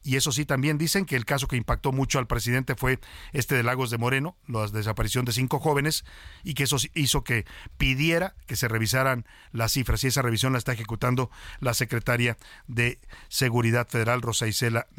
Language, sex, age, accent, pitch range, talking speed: Spanish, male, 40-59, Mexican, 120-150 Hz, 190 wpm